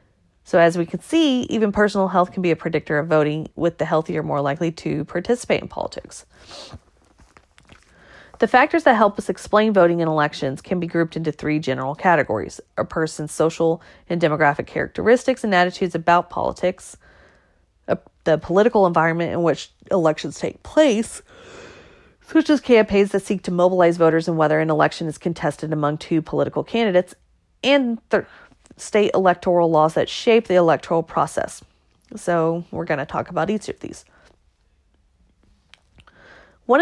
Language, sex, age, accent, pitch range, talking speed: English, female, 30-49, American, 155-205 Hz, 155 wpm